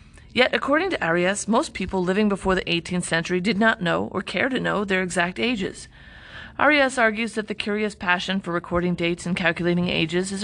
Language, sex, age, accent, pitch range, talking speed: English, female, 30-49, American, 170-215 Hz, 195 wpm